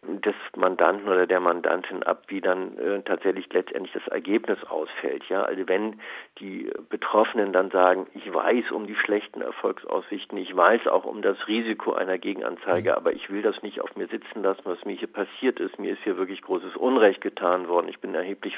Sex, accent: male, German